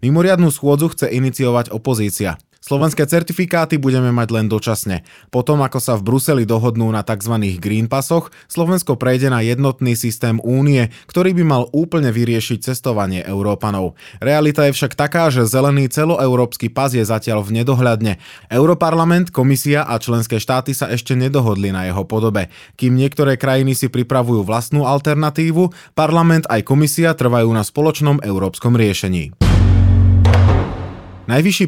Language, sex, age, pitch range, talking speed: Slovak, male, 20-39, 110-145 Hz, 140 wpm